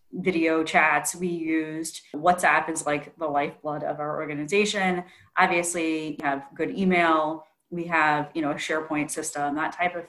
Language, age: English, 30-49